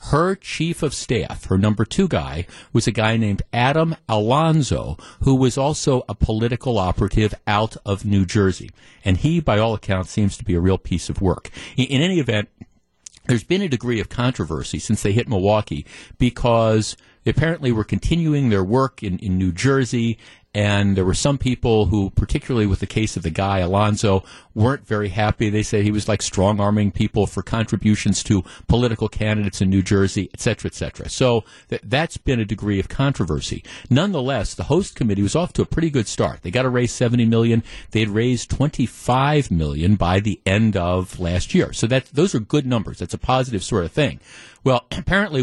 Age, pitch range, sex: 50-69, 95-125 Hz, male